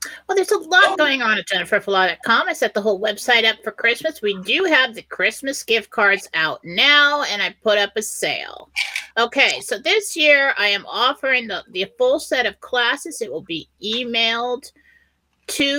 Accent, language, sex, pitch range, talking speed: American, English, female, 185-265 Hz, 185 wpm